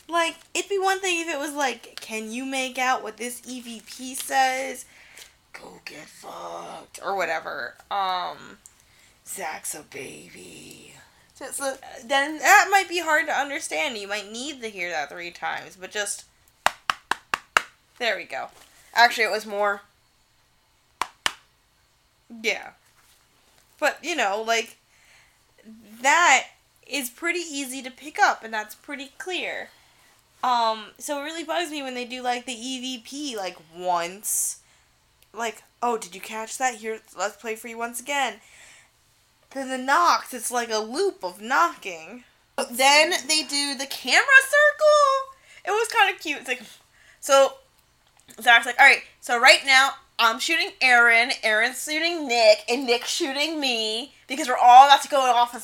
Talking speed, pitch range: 150 wpm, 225-300 Hz